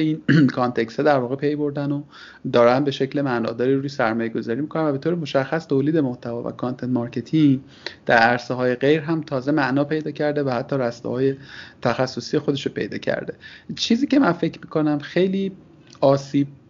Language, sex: Persian, male